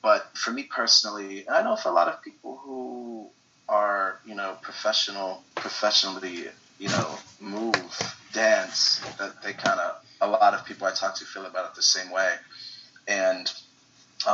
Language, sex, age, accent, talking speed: English, male, 30-49, American, 170 wpm